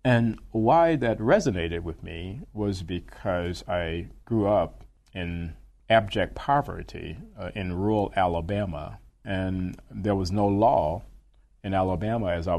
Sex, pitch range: male, 85-105 Hz